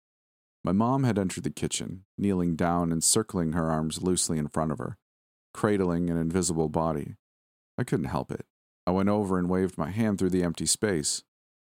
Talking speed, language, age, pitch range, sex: 185 wpm, English, 40-59, 75-95 Hz, male